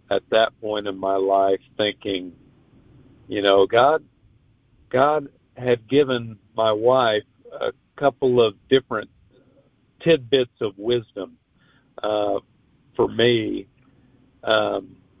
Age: 50-69